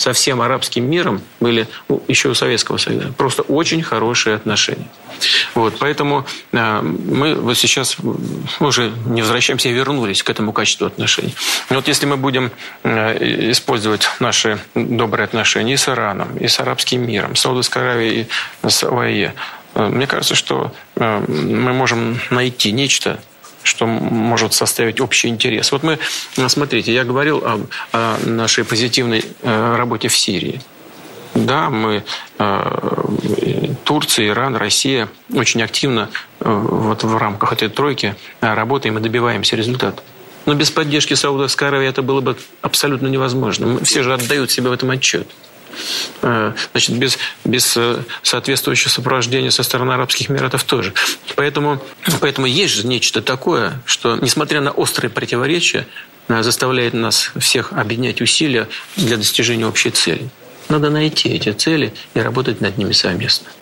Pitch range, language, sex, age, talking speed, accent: 115-135 Hz, Russian, male, 40-59, 140 wpm, native